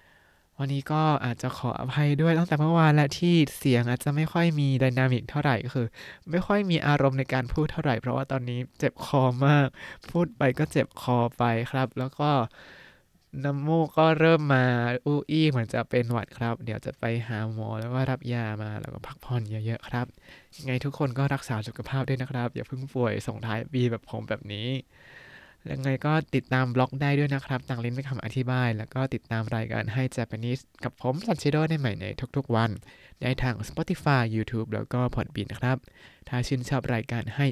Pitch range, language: 115-140 Hz, Thai